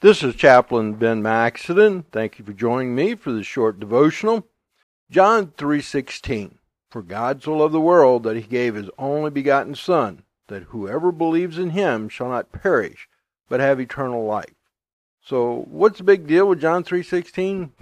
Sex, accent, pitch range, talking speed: male, American, 120-160 Hz, 165 wpm